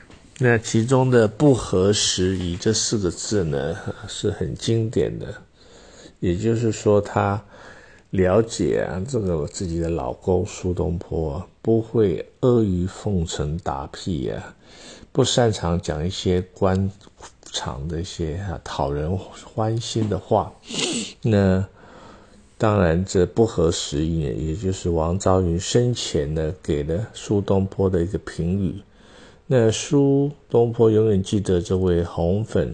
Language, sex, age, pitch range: Chinese, male, 50-69, 85-110 Hz